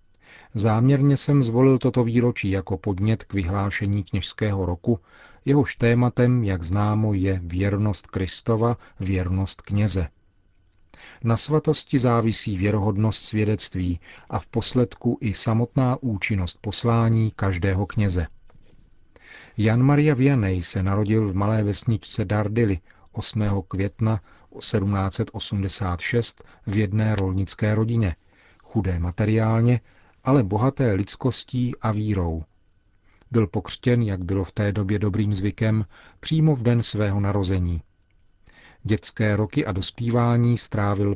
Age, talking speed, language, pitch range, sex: 40-59, 110 wpm, Czech, 95-115 Hz, male